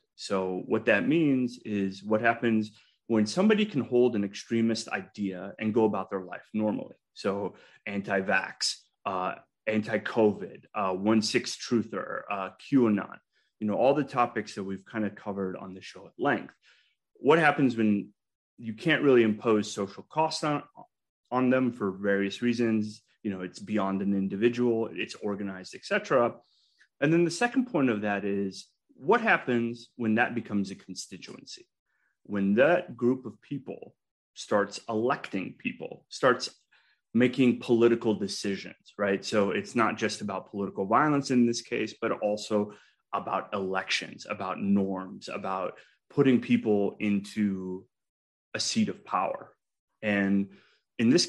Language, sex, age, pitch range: English, male, 30-49, 100-120 Hz